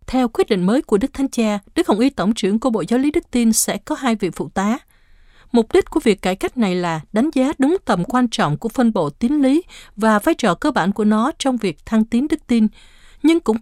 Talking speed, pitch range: 260 wpm, 195-265 Hz